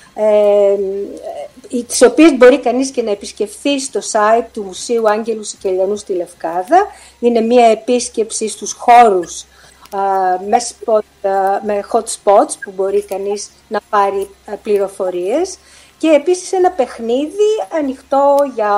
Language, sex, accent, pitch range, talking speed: Greek, female, native, 200-275 Hz, 110 wpm